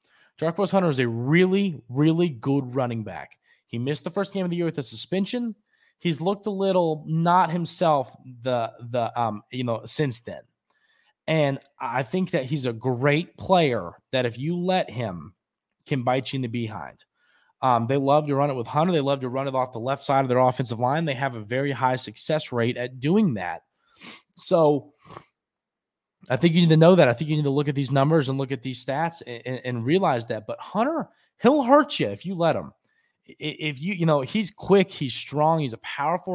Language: English